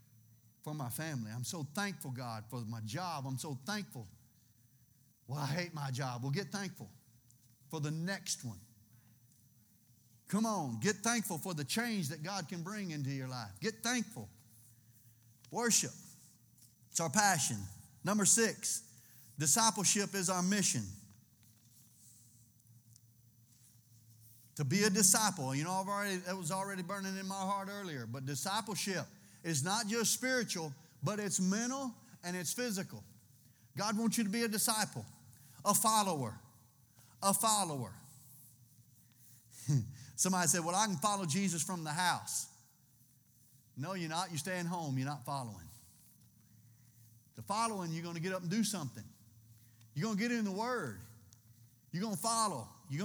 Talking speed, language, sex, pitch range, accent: 150 wpm, English, male, 120-195 Hz, American